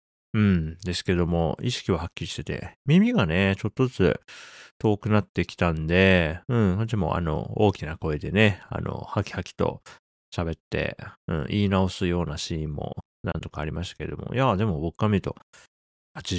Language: Japanese